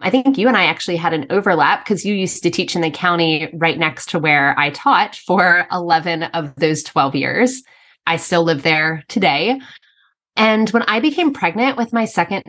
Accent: American